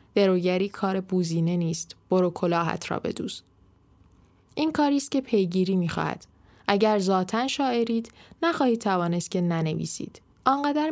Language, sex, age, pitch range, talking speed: Persian, female, 10-29, 175-240 Hz, 120 wpm